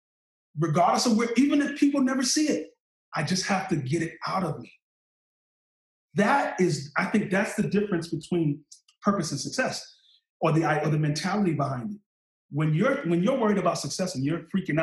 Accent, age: American, 30-49